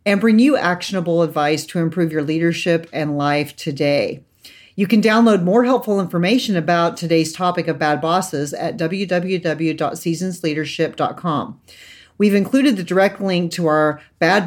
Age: 40-59